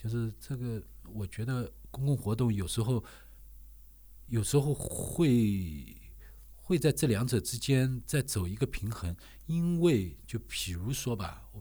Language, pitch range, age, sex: Chinese, 90-125 Hz, 50-69, male